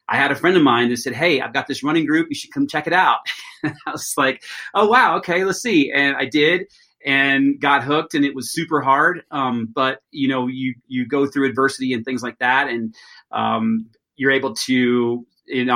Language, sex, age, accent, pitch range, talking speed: English, male, 30-49, American, 130-160 Hz, 230 wpm